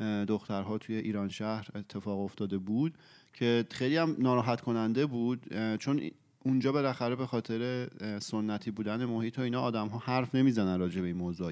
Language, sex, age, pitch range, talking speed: Persian, male, 30-49, 105-125 Hz, 165 wpm